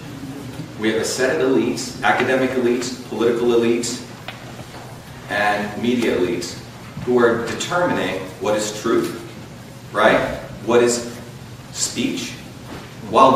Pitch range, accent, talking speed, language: 115-130 Hz, American, 110 wpm, English